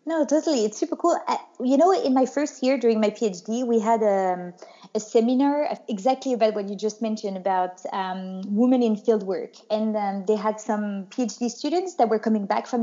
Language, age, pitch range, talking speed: English, 20-39, 200-245 Hz, 205 wpm